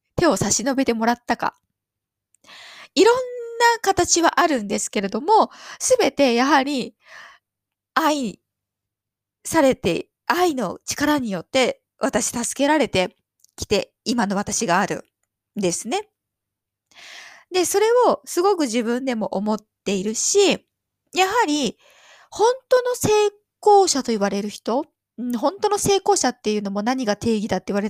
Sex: female